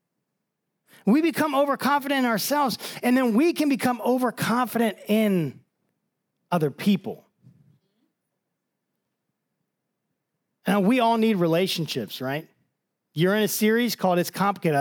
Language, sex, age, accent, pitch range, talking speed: English, male, 40-59, American, 175-225 Hz, 110 wpm